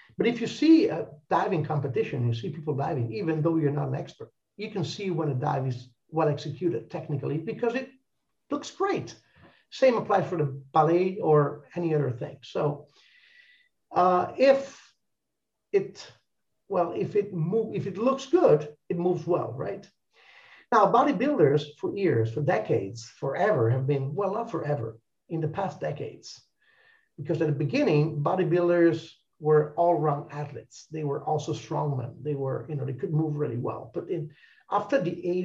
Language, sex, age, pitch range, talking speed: Italian, male, 50-69, 145-195 Hz, 170 wpm